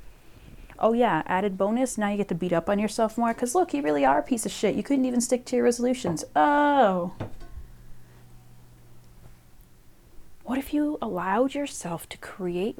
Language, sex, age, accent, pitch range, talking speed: English, female, 30-49, American, 180-230 Hz, 175 wpm